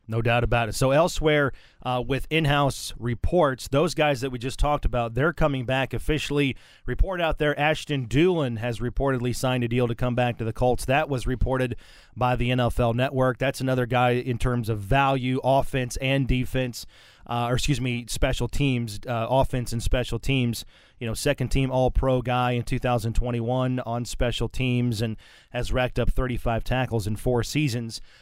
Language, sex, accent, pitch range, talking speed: English, male, American, 120-145 Hz, 180 wpm